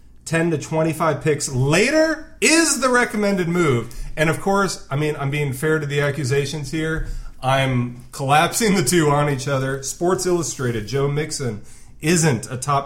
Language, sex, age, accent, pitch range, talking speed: English, male, 30-49, American, 110-145 Hz, 165 wpm